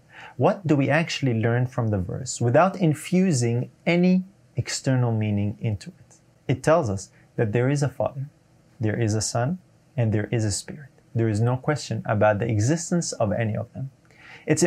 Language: English